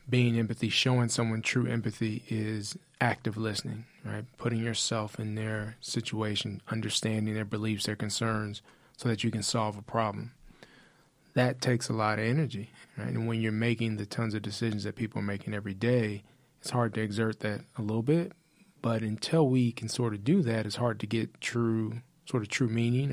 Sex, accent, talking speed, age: male, American, 190 wpm, 20-39